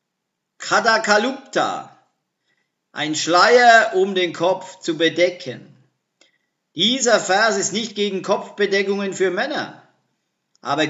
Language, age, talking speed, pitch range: German, 50-69, 95 wpm, 185-215 Hz